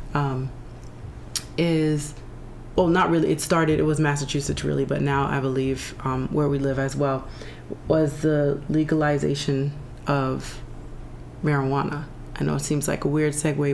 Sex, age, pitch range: female, 30-49, 140-155 Hz